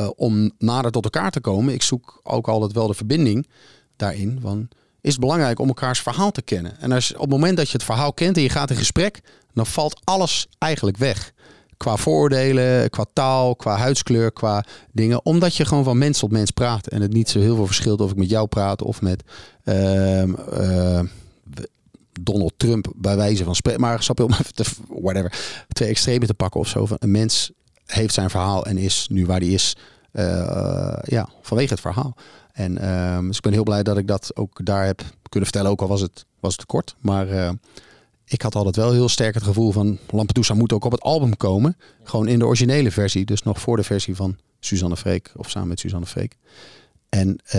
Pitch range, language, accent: 100-125 Hz, Dutch, Dutch